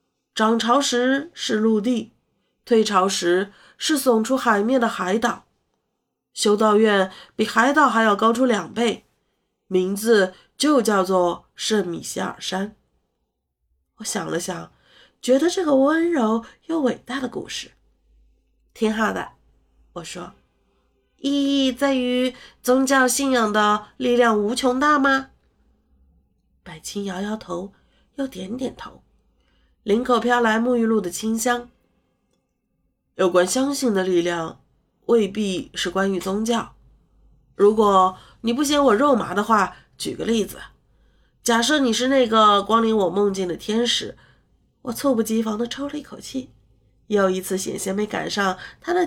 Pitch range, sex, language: 185-250 Hz, female, Chinese